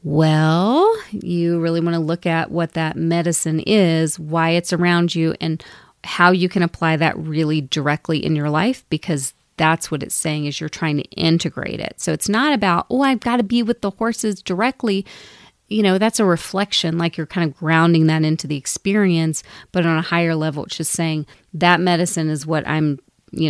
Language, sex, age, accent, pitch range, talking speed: English, female, 30-49, American, 155-195 Hz, 200 wpm